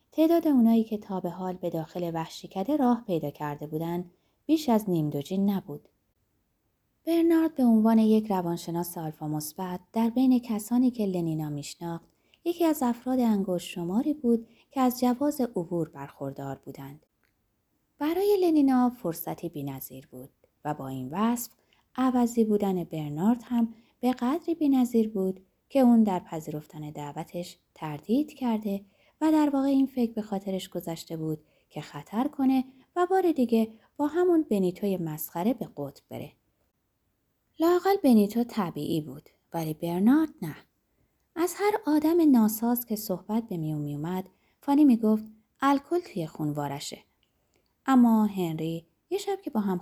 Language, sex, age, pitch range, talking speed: Persian, female, 20-39, 165-250 Hz, 140 wpm